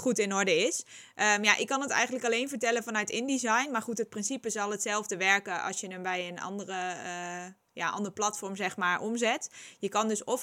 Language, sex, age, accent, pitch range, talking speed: Dutch, female, 20-39, Dutch, 195-235 Hz, 200 wpm